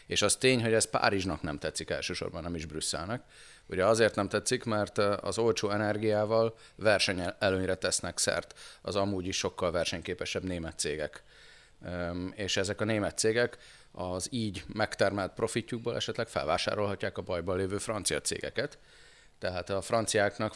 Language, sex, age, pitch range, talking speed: Hungarian, male, 30-49, 95-110 Hz, 145 wpm